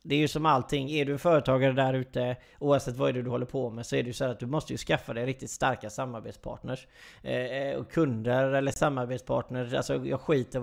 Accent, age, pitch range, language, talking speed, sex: native, 30-49, 125-140 Hz, Swedish, 220 wpm, male